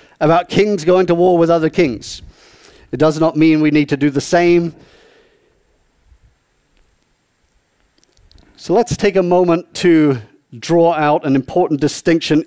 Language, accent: English, British